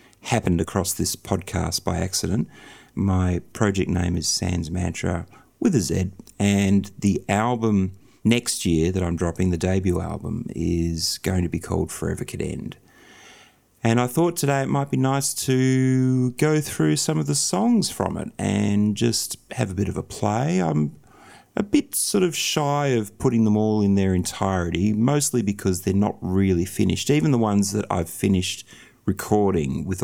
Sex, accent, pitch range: male, Australian, 90-120 Hz